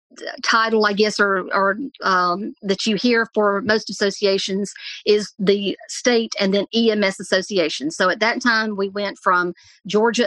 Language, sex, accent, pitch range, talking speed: English, female, American, 195-225 Hz, 160 wpm